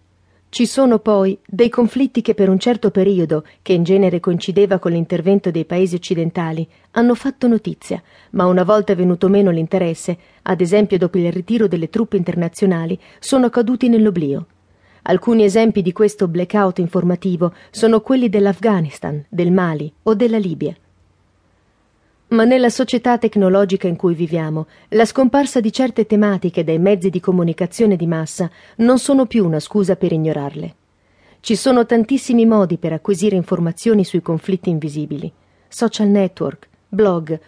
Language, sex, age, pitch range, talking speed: Italian, female, 40-59, 175-225 Hz, 145 wpm